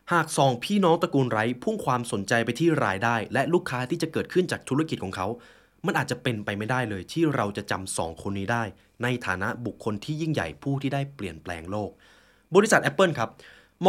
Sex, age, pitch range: male, 20-39, 105-155 Hz